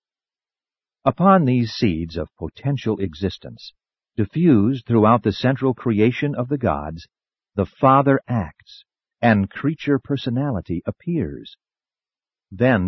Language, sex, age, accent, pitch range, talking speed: English, male, 50-69, American, 90-130 Hz, 105 wpm